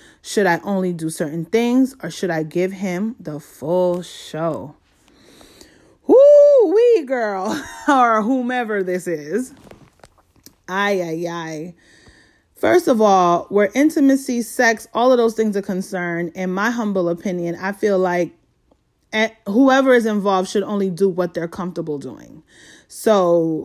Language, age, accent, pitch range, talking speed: English, 30-49, American, 190-245 Hz, 135 wpm